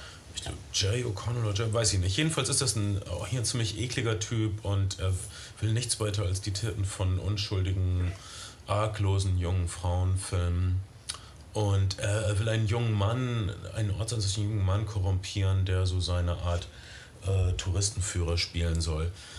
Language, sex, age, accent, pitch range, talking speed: German, male, 30-49, German, 95-110 Hz, 160 wpm